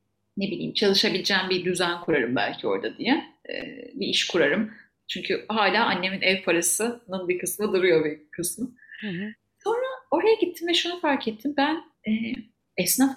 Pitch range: 185-265 Hz